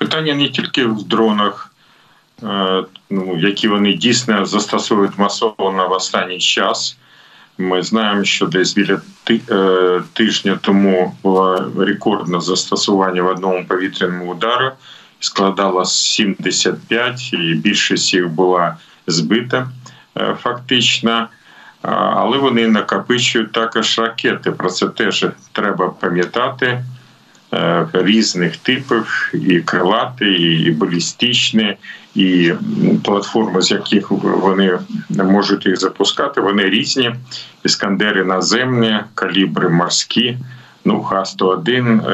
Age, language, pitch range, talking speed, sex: 40-59, Ukrainian, 95-120 Hz, 95 wpm, male